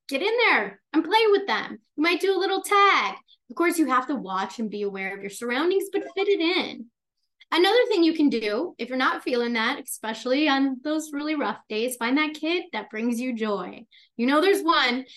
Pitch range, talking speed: 235-360 Hz, 220 wpm